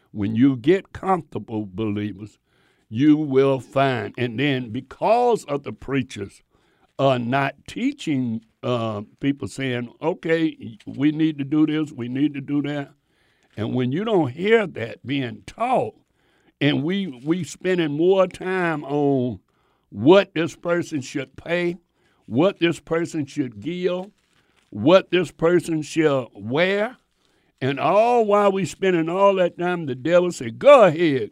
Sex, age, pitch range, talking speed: male, 60-79, 125-170 Hz, 145 wpm